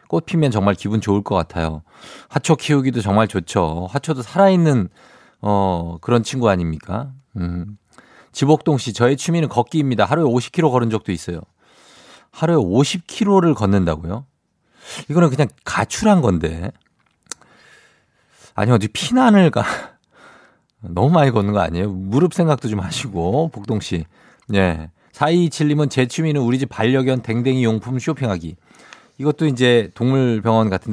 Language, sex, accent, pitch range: Korean, male, native, 95-140 Hz